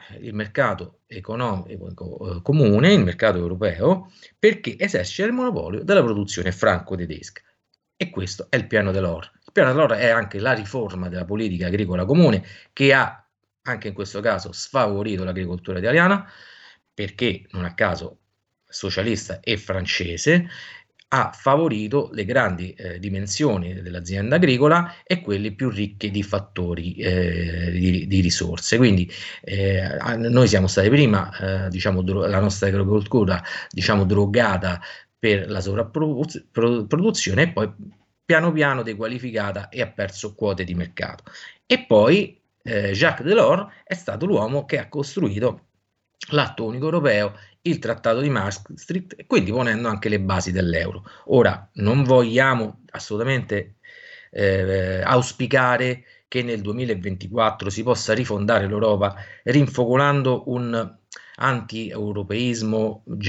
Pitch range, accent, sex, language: 95-125 Hz, native, male, Italian